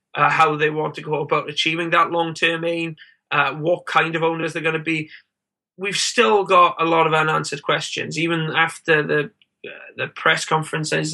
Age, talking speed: 20-39, 190 wpm